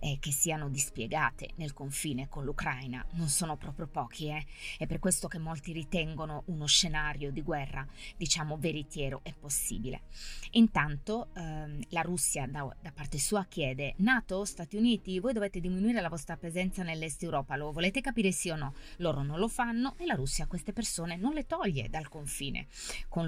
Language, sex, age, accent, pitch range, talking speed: Italian, female, 20-39, native, 145-185 Hz, 175 wpm